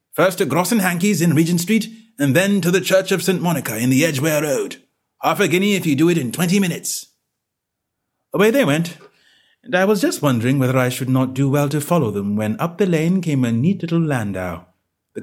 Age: 30-49